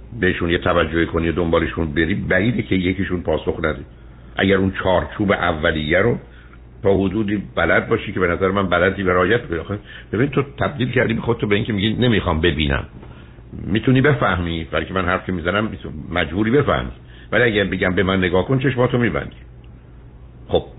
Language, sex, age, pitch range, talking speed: Persian, male, 60-79, 80-105 Hz, 175 wpm